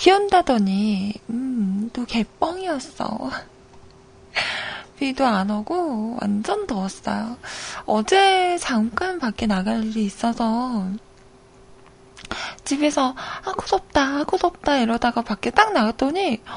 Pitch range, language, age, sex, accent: 220-320 Hz, Korean, 20-39, female, native